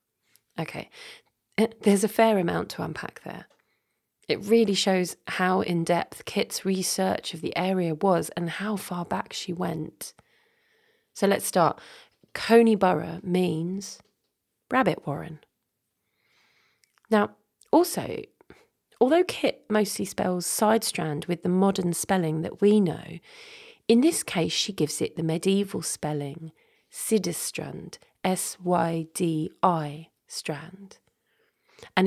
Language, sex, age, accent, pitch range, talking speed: English, female, 30-49, British, 165-220 Hz, 110 wpm